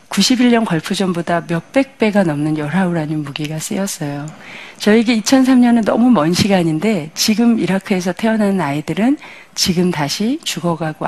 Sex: female